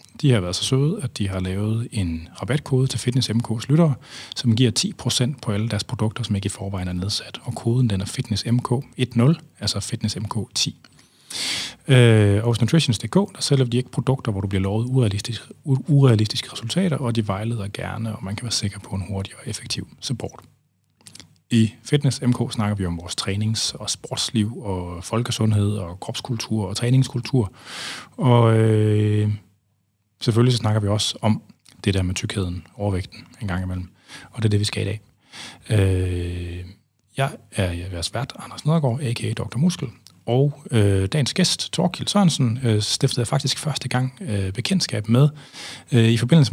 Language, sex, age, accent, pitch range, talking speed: Danish, male, 30-49, native, 100-125 Hz, 175 wpm